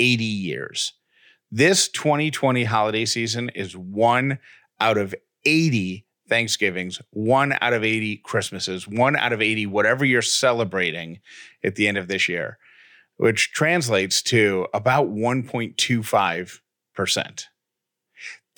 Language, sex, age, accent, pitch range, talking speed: English, male, 40-59, American, 110-135 Hz, 115 wpm